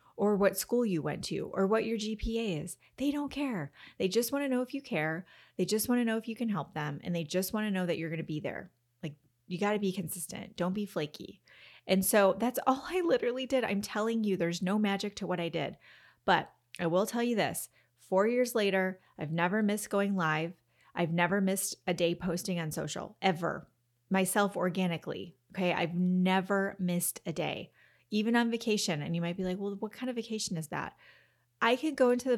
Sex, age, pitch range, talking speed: female, 30-49, 170-215 Hz, 215 wpm